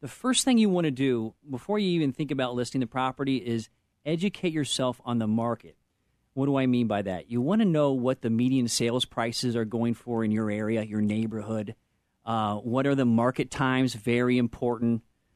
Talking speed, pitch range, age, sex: 205 wpm, 115-140 Hz, 40-59, male